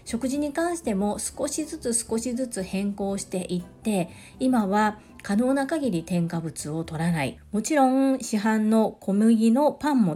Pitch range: 180-240 Hz